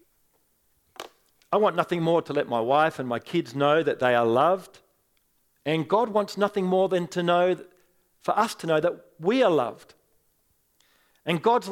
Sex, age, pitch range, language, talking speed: male, 50-69, 145-195 Hz, English, 175 wpm